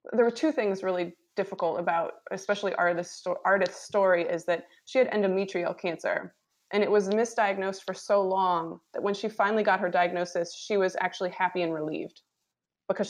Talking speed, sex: 175 wpm, female